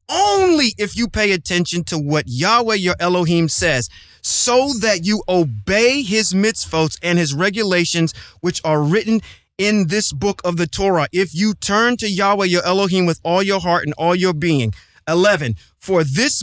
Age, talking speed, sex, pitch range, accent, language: 30-49, 170 wpm, male, 155-220 Hz, American, English